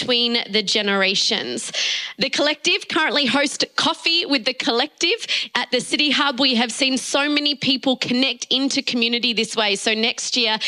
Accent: Australian